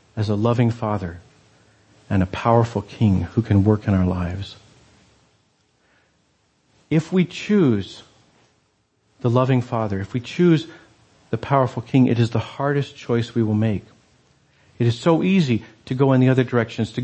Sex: male